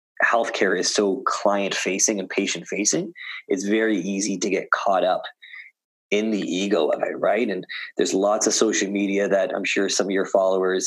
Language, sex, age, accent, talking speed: English, male, 20-39, American, 190 wpm